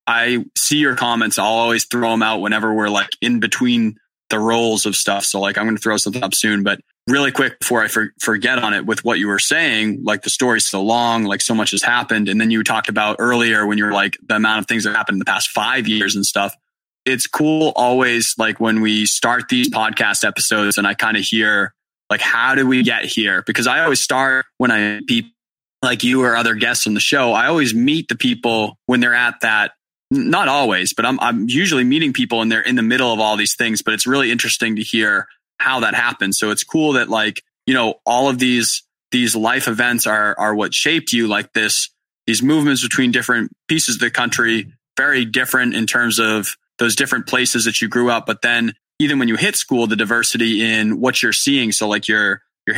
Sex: male